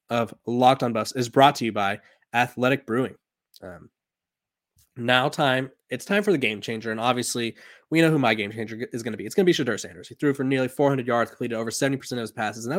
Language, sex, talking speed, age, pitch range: English, male, 245 wpm, 20-39, 115-135 Hz